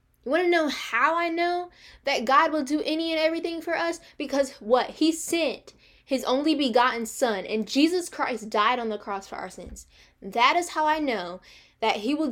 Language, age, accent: English, 10-29, American